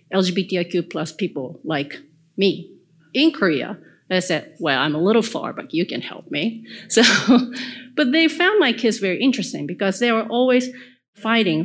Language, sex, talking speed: Filipino, female, 165 wpm